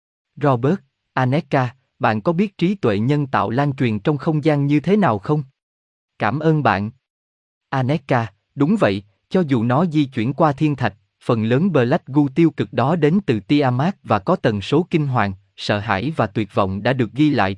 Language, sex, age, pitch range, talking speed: Vietnamese, male, 20-39, 110-155 Hz, 200 wpm